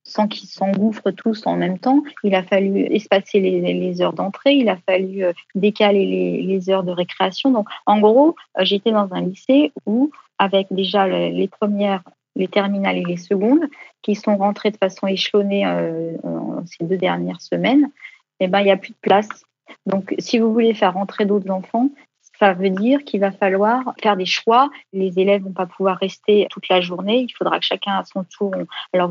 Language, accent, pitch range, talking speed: French, French, 185-220 Hz, 195 wpm